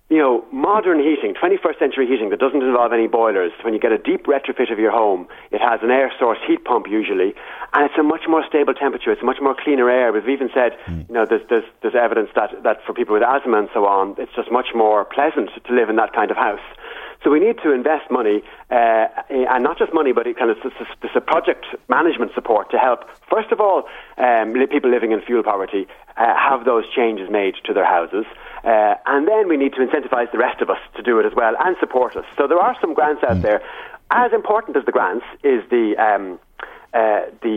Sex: male